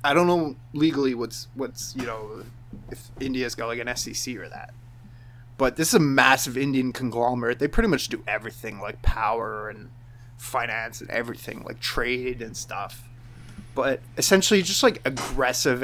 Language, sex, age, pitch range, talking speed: English, male, 20-39, 120-135 Hz, 170 wpm